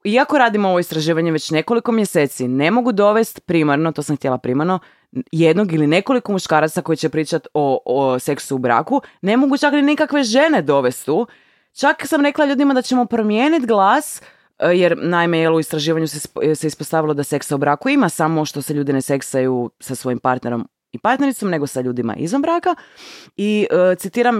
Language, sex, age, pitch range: Croatian, female, 20-39, 135-205 Hz